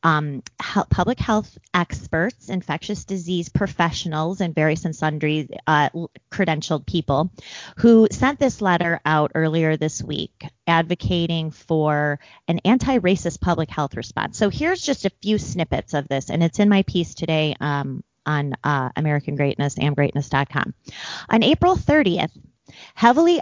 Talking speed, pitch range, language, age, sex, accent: 135 wpm, 155-195 Hz, English, 30-49, female, American